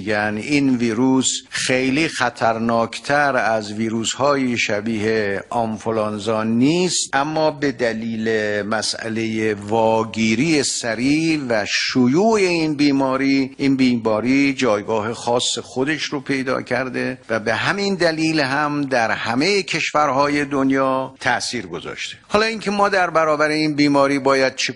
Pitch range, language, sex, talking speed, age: 120-155 Hz, Persian, male, 115 wpm, 50-69